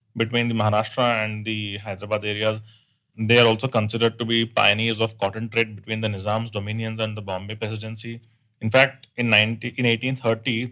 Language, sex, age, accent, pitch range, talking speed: English, male, 30-49, Indian, 105-115 Hz, 175 wpm